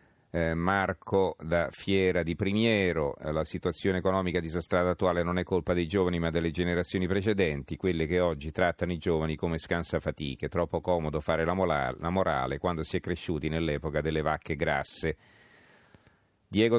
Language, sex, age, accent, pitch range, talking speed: Italian, male, 40-59, native, 80-95 Hz, 150 wpm